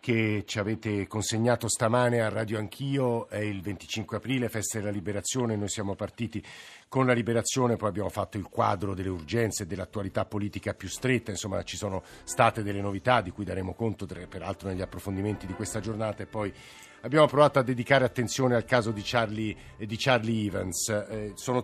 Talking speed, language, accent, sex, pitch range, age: 185 wpm, Italian, native, male, 105-125 Hz, 50-69